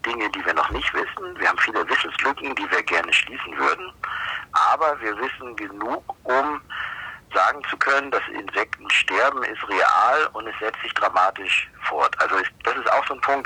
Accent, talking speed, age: German, 185 wpm, 50-69